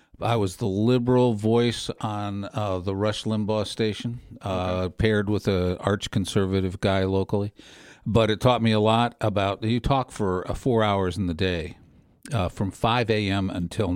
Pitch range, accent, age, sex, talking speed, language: 95-110 Hz, American, 50-69, male, 170 wpm, English